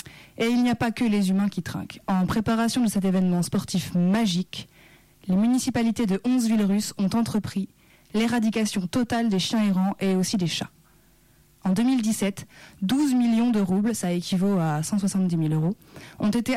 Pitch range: 180-225 Hz